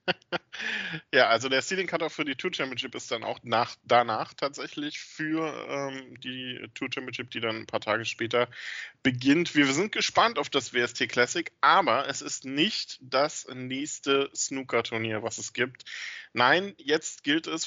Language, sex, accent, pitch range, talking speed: German, male, German, 115-145 Hz, 155 wpm